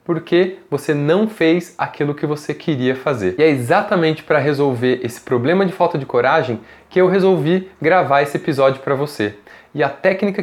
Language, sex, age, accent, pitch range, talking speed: Portuguese, male, 20-39, Brazilian, 135-175 Hz, 180 wpm